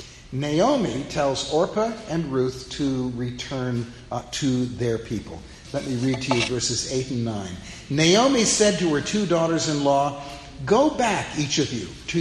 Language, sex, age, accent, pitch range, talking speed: English, male, 60-79, American, 115-155 Hz, 155 wpm